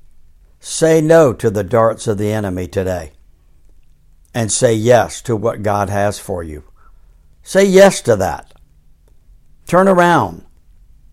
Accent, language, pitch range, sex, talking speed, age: American, English, 80-125 Hz, male, 130 wpm, 60-79